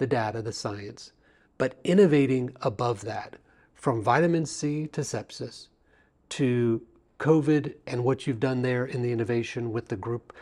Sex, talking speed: male, 150 wpm